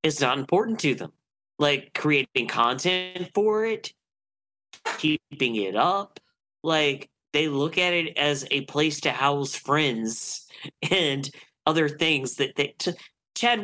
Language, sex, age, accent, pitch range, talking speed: English, male, 30-49, American, 140-190 Hz, 135 wpm